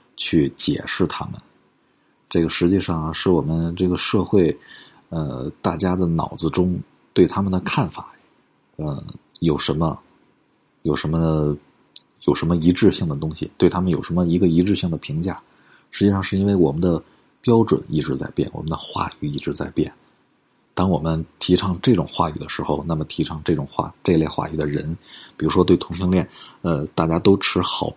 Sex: male